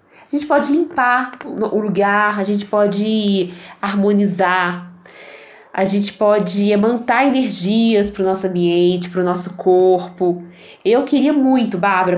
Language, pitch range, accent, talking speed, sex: Portuguese, 180-235 Hz, Brazilian, 135 wpm, female